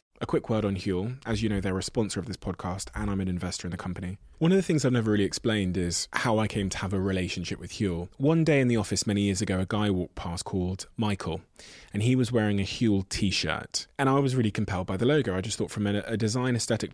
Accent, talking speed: British, 265 wpm